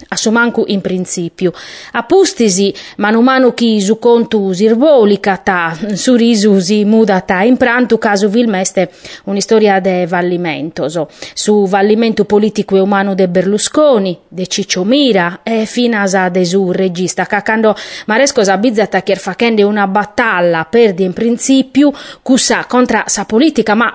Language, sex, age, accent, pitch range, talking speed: Italian, female, 30-49, native, 195-245 Hz, 145 wpm